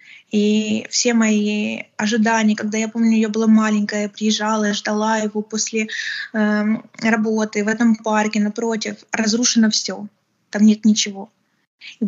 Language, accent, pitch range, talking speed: Ukrainian, native, 205-225 Hz, 135 wpm